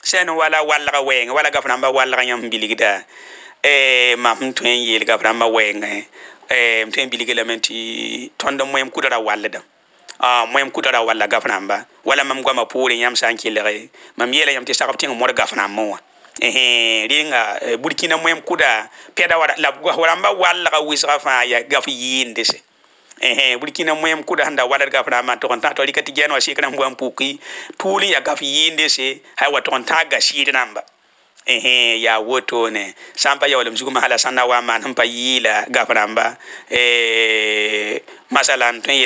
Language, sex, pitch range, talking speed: Arabic, male, 115-135 Hz, 140 wpm